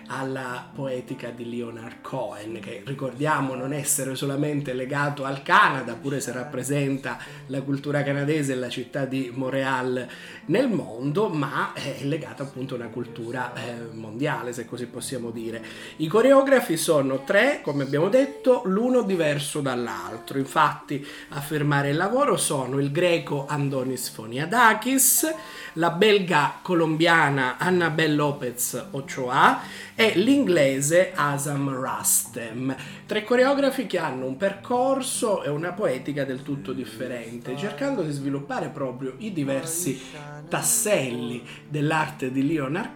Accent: native